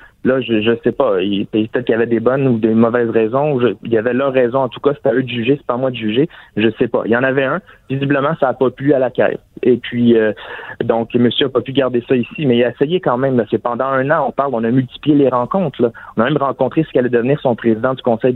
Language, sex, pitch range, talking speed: French, male, 115-135 Hz, 305 wpm